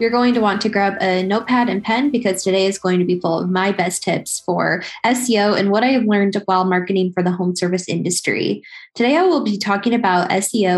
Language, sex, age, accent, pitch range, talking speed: English, female, 10-29, American, 185-220 Hz, 235 wpm